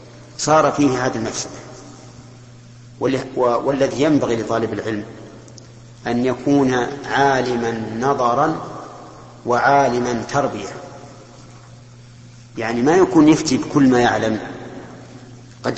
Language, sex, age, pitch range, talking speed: Arabic, male, 50-69, 120-140 Hz, 85 wpm